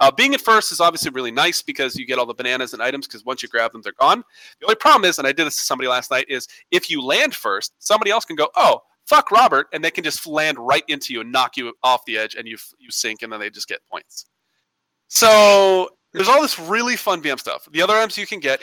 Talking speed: 275 wpm